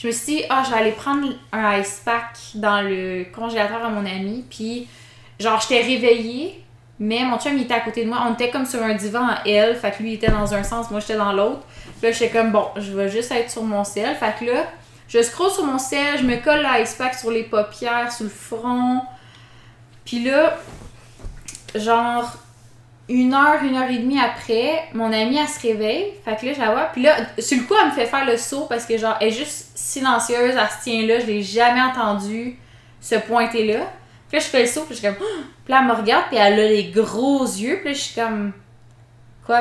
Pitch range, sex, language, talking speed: 205-250 Hz, female, French, 240 wpm